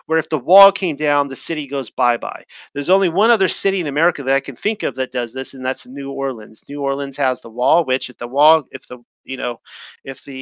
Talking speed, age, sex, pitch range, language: 255 wpm, 40-59, male, 130-155 Hz, English